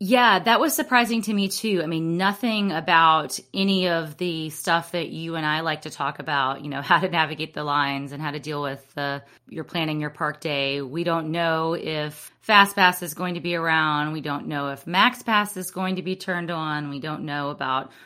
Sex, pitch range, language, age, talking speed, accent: female, 150-180 Hz, English, 30-49, 215 wpm, American